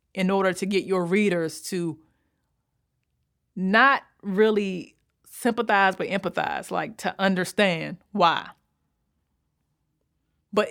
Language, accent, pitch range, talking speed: English, American, 185-240 Hz, 95 wpm